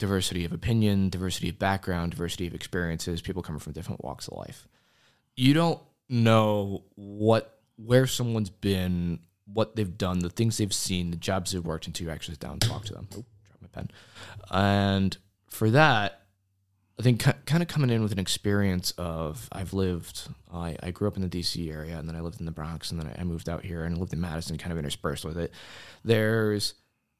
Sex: male